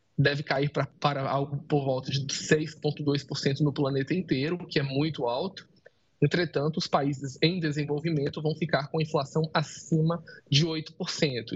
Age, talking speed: 20-39, 150 wpm